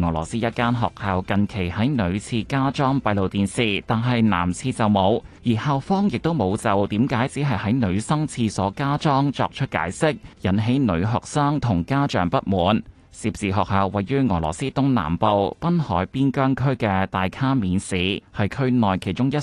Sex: male